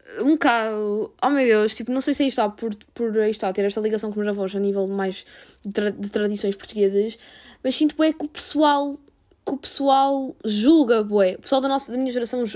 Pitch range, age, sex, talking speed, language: 220-285 Hz, 10-29, female, 230 wpm, Portuguese